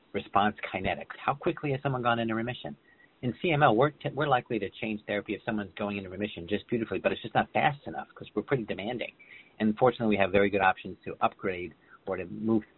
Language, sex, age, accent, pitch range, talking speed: English, male, 40-59, American, 100-115 Hz, 220 wpm